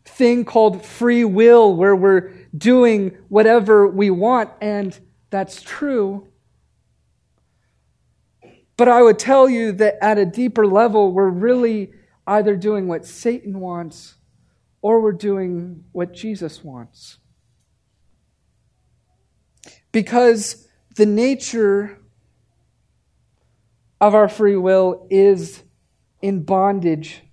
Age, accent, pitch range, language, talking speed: 40-59, American, 170-215 Hz, English, 100 wpm